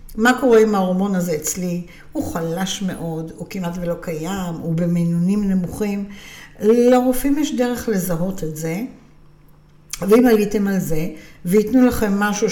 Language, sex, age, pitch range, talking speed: Hebrew, female, 60-79, 170-210 Hz, 140 wpm